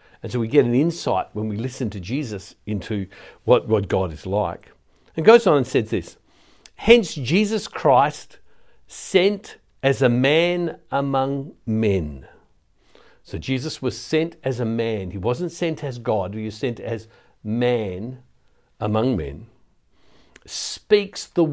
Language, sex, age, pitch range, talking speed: English, male, 60-79, 110-160 Hz, 150 wpm